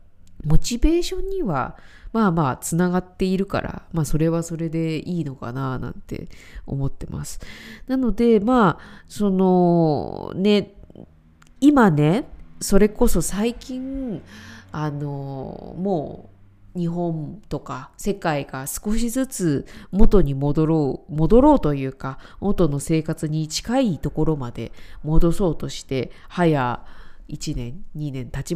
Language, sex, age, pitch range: Japanese, female, 20-39, 140-195 Hz